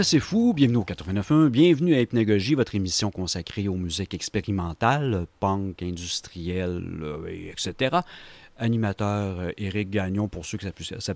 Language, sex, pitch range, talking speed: French, male, 95-130 Hz, 140 wpm